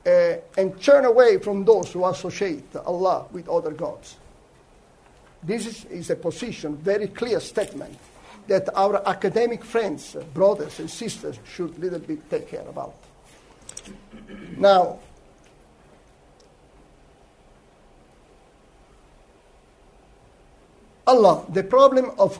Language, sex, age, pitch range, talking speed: Italian, male, 50-69, 175-230 Hz, 105 wpm